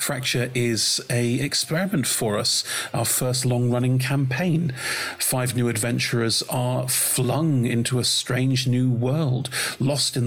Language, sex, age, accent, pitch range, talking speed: English, male, 40-59, British, 115-135 Hz, 130 wpm